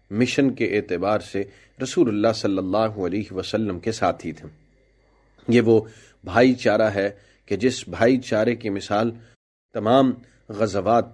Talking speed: 140 wpm